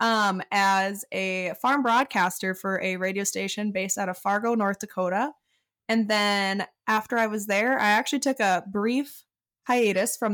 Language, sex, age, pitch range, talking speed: English, female, 20-39, 195-230 Hz, 165 wpm